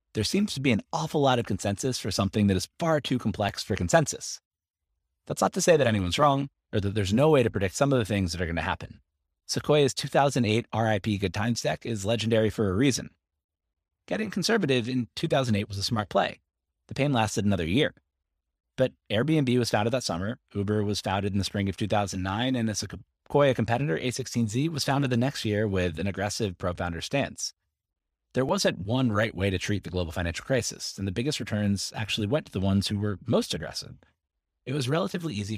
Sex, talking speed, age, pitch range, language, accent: male, 205 wpm, 30-49, 90-125 Hz, English, American